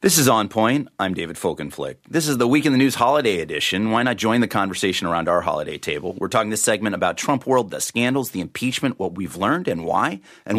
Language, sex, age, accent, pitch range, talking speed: English, male, 30-49, American, 95-130 Hz, 240 wpm